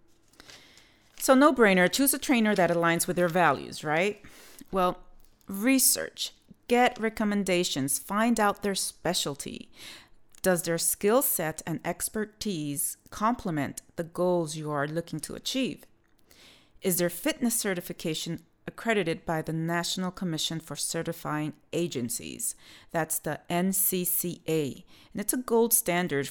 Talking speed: 125 wpm